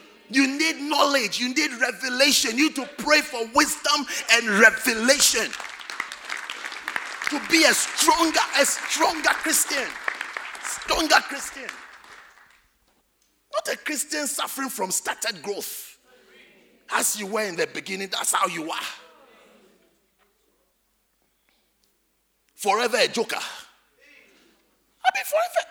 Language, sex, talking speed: English, male, 105 wpm